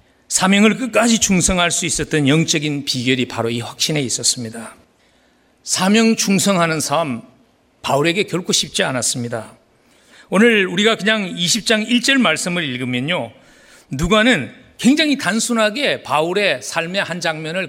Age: 40-59